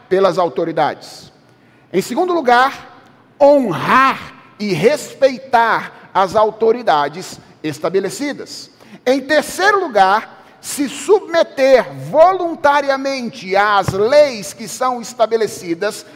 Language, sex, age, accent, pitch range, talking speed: Portuguese, male, 40-59, Brazilian, 180-275 Hz, 80 wpm